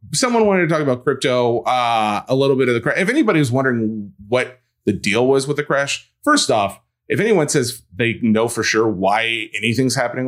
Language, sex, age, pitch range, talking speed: English, male, 30-49, 110-135 Hz, 205 wpm